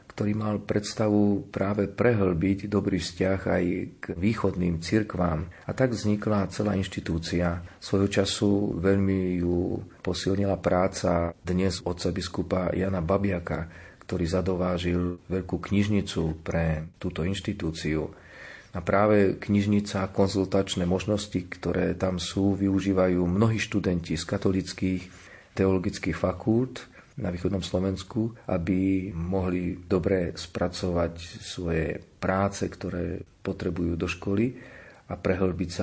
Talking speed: 110 wpm